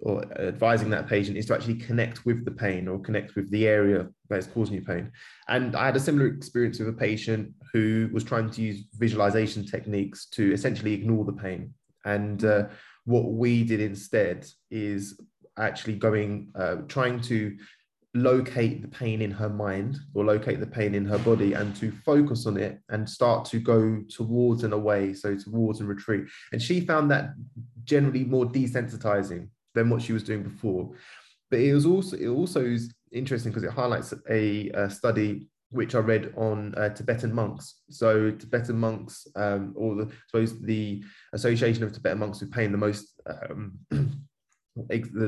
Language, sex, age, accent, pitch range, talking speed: English, male, 20-39, British, 105-115 Hz, 180 wpm